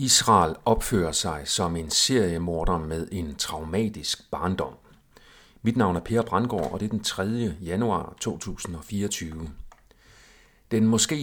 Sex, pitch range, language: male, 85-115 Hz, Danish